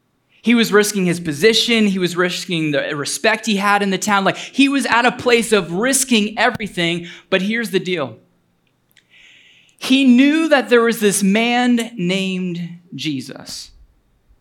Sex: male